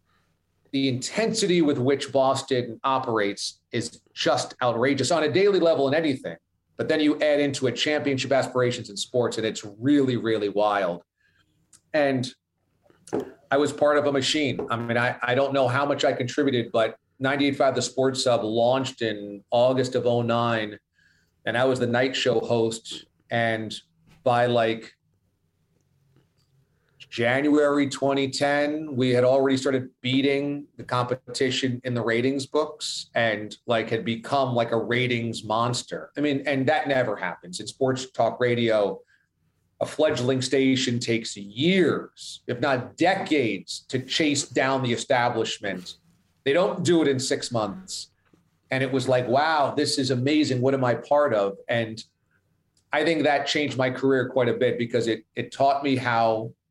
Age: 40-59